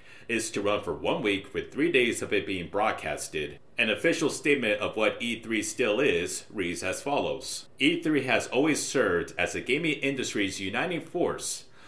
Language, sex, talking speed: English, male, 170 wpm